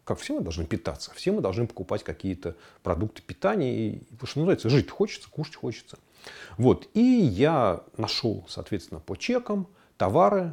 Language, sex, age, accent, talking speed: Russian, male, 40-59, native, 155 wpm